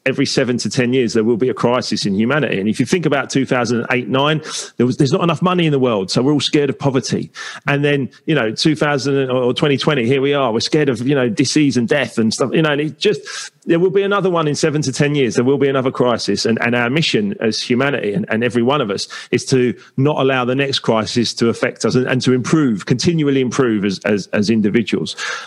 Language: English